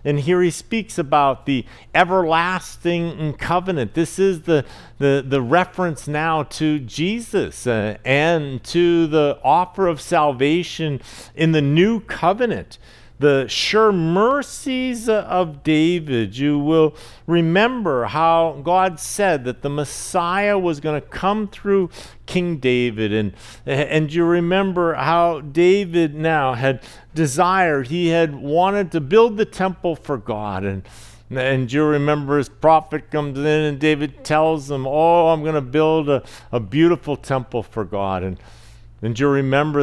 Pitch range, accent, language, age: 115-165 Hz, American, English, 50-69